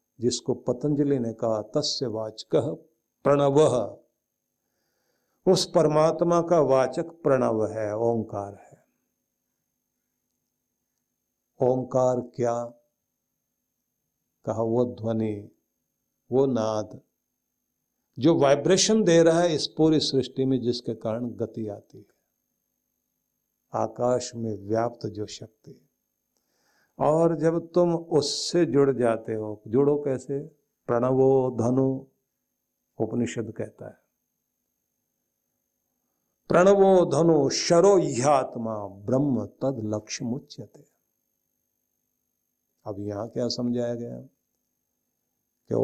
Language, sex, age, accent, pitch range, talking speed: Hindi, male, 60-79, native, 115-145 Hz, 90 wpm